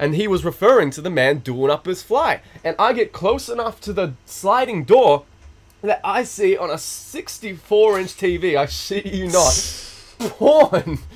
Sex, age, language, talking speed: male, 20-39, English, 170 wpm